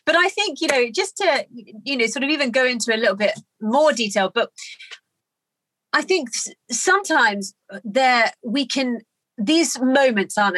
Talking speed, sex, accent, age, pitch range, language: 165 wpm, female, British, 30-49, 195-265 Hz, English